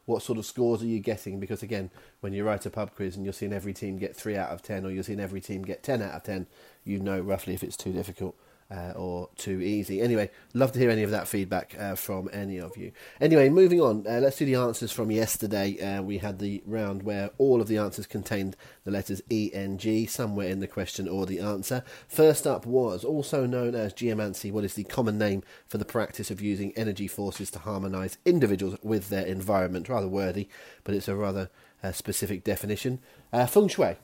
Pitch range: 100-120 Hz